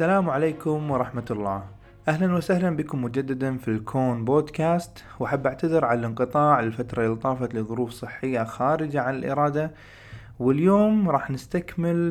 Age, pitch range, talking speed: 20-39, 115-155 Hz, 130 wpm